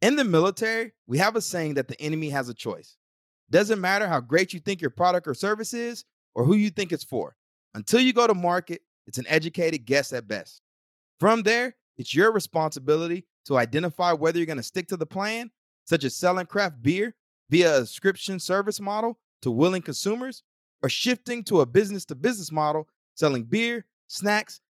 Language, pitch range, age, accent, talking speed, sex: English, 145-205 Hz, 30-49, American, 195 wpm, male